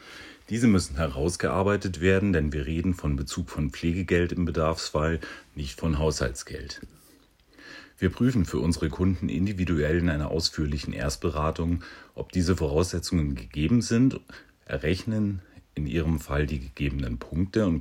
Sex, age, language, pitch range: male, 40-59, German, 75-90 Hz